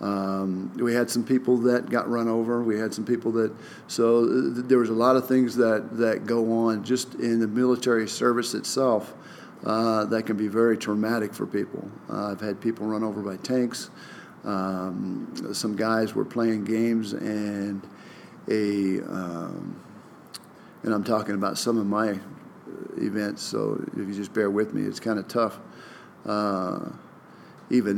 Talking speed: 165 wpm